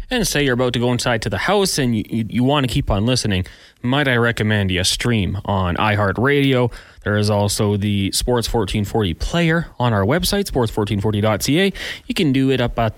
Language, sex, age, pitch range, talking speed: English, male, 30-49, 100-130 Hz, 200 wpm